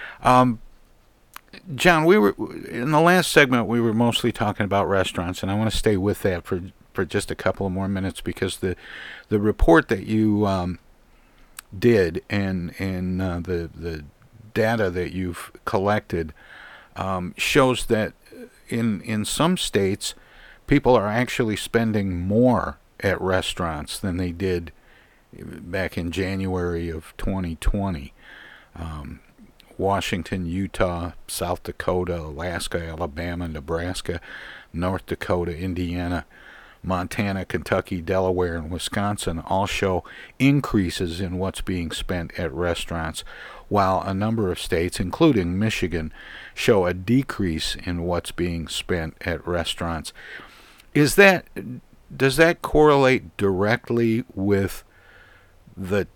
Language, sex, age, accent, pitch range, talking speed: English, male, 50-69, American, 90-110 Hz, 125 wpm